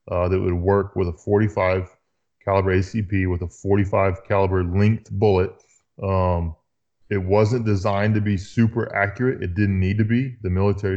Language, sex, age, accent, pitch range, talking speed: English, male, 20-39, American, 95-105 Hz, 165 wpm